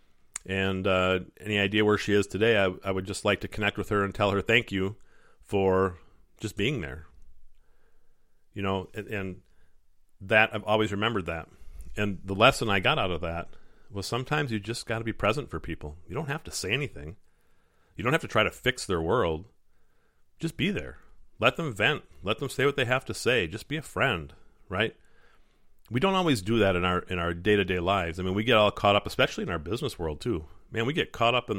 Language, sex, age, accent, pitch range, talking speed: English, male, 40-59, American, 90-115 Hz, 220 wpm